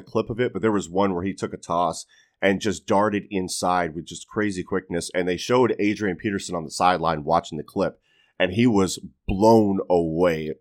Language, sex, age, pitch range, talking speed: English, male, 30-49, 90-105 Hz, 205 wpm